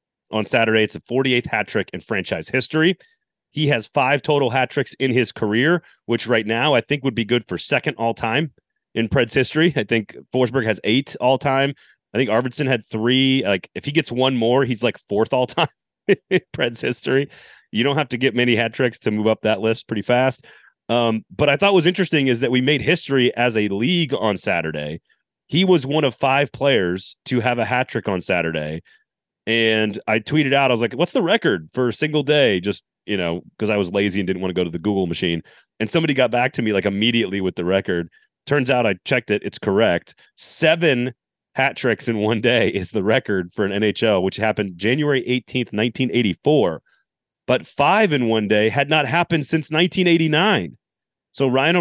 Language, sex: English, male